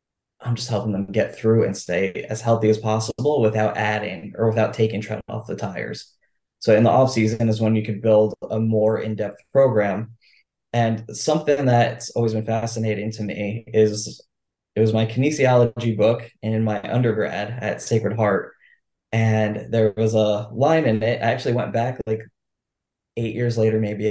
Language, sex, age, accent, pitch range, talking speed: English, male, 20-39, American, 105-115 Hz, 175 wpm